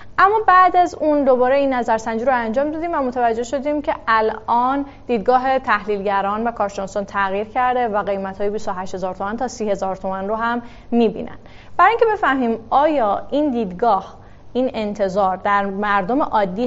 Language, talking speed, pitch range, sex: Persian, 160 wpm, 200-280 Hz, female